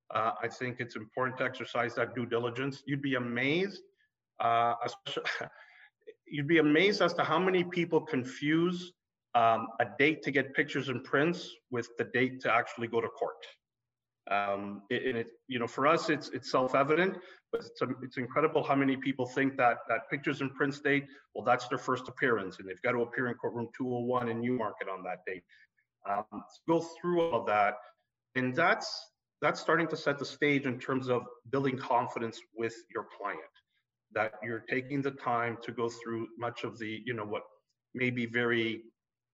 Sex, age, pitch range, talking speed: male, 40-59, 120-155 Hz, 185 wpm